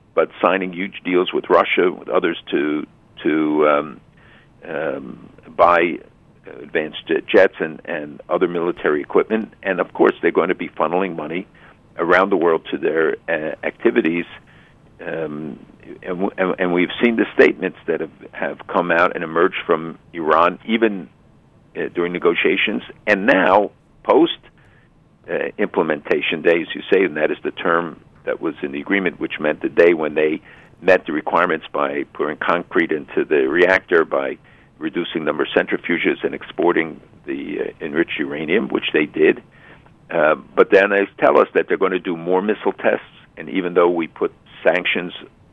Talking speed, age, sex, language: 165 wpm, 50-69, male, English